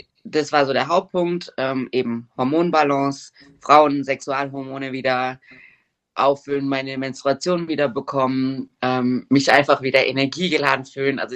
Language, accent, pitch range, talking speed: German, German, 135-170 Hz, 120 wpm